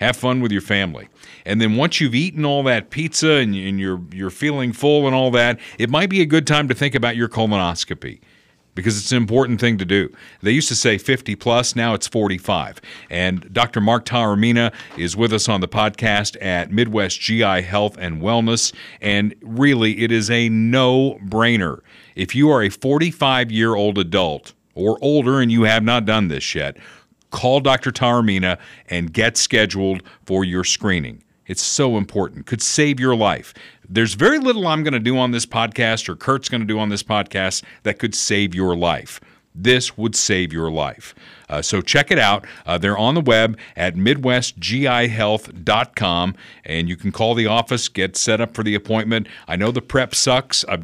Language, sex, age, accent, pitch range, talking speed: English, male, 50-69, American, 100-125 Hz, 190 wpm